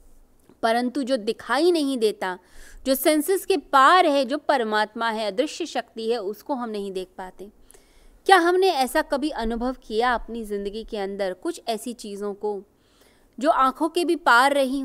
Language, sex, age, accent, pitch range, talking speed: Hindi, female, 20-39, native, 215-280 Hz, 165 wpm